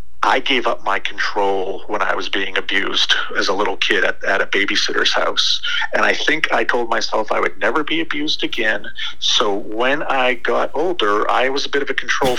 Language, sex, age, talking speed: English, male, 40-59, 210 wpm